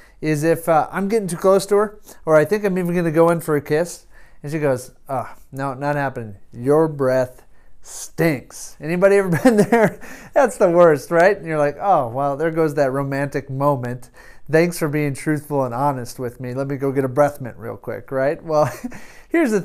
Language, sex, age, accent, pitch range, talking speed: English, male, 30-49, American, 145-195 Hz, 215 wpm